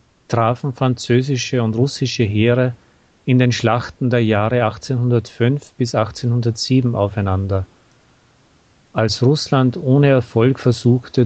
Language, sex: German, male